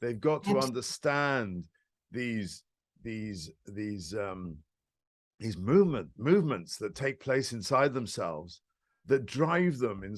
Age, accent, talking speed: 50-69, British, 120 wpm